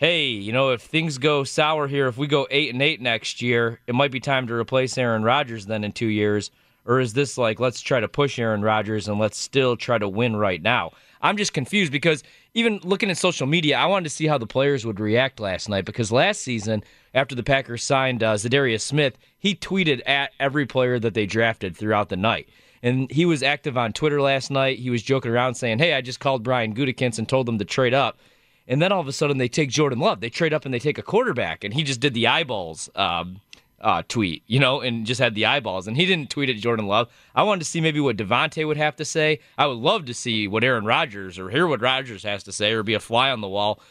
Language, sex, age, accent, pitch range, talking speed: English, male, 20-39, American, 115-145 Hz, 255 wpm